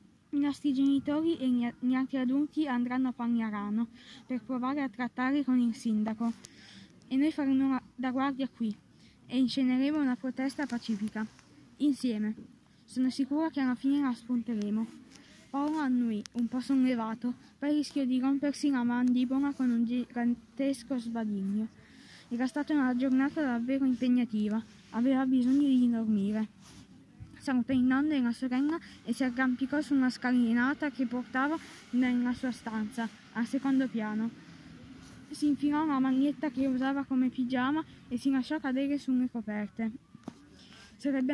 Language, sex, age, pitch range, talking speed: Italian, female, 20-39, 235-275 Hz, 140 wpm